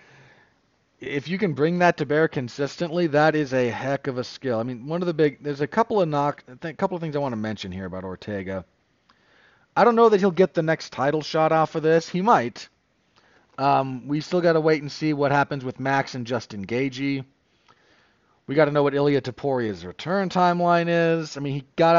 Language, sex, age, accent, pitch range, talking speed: English, male, 40-59, American, 120-160 Hz, 220 wpm